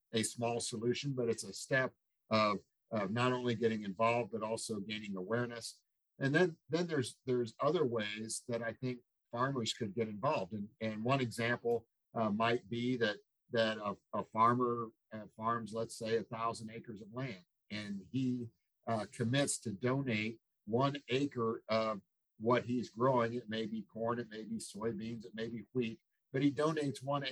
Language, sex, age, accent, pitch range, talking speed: English, male, 50-69, American, 110-125 Hz, 175 wpm